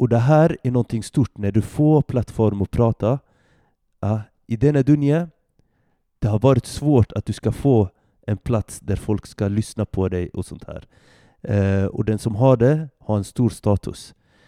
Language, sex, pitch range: Swedish, male, 105-130 Hz